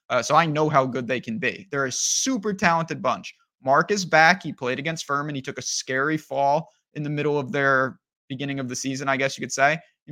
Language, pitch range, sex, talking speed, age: English, 135-180 Hz, male, 245 wpm, 20-39